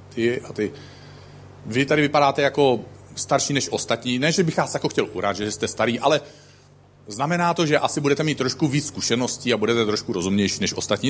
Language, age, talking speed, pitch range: Czech, 40-59, 195 wpm, 130-195 Hz